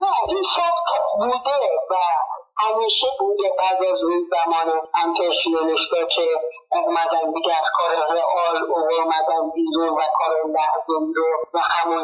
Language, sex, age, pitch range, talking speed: Arabic, male, 50-69, 160-245 Hz, 125 wpm